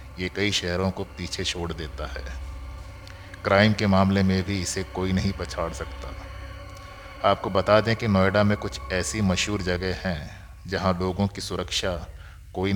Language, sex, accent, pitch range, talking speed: Hindi, male, native, 90-100 Hz, 160 wpm